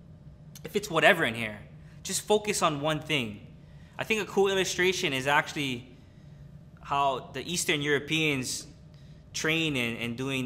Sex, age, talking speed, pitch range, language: male, 20-39, 140 wpm, 130-155 Hz, English